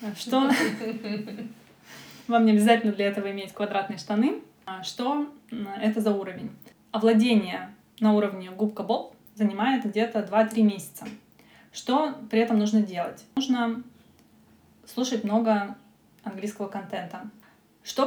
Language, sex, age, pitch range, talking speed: Russian, female, 20-39, 205-240 Hz, 105 wpm